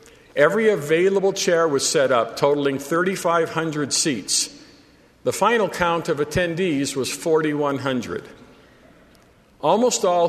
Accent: American